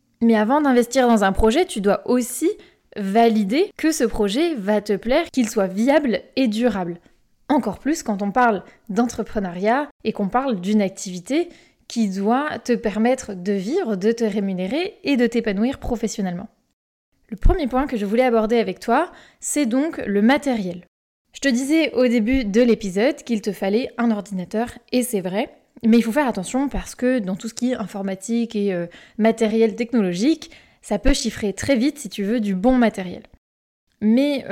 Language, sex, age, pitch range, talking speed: French, female, 20-39, 210-265 Hz, 175 wpm